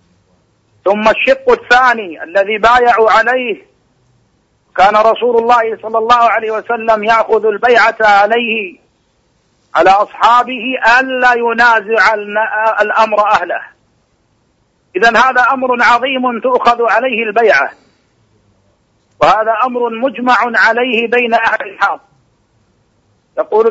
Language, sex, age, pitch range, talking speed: Arabic, male, 50-69, 220-245 Hz, 95 wpm